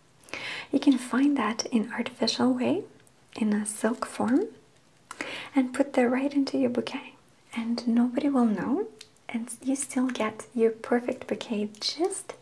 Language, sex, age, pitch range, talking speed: English, female, 30-49, 225-275 Hz, 145 wpm